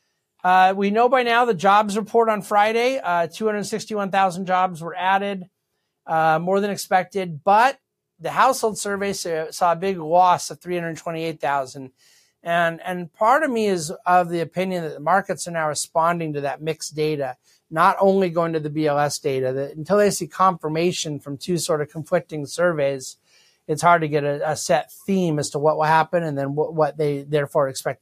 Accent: American